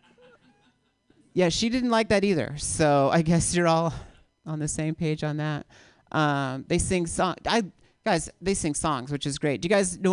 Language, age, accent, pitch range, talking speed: English, 40-59, American, 155-205 Hz, 195 wpm